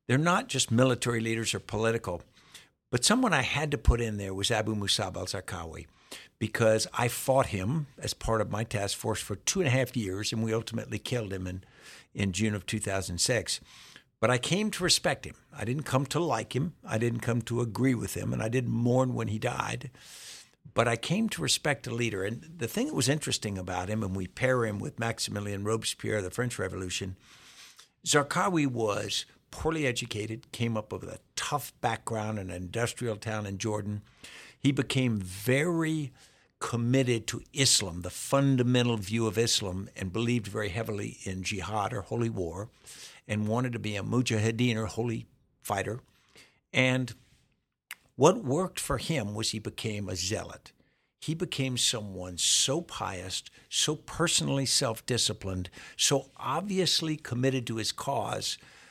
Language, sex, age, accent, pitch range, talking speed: English, male, 60-79, American, 105-130 Hz, 170 wpm